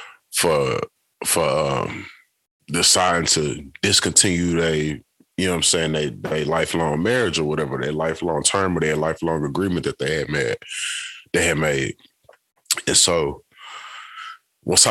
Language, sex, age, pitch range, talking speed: English, male, 20-39, 80-95 Hz, 135 wpm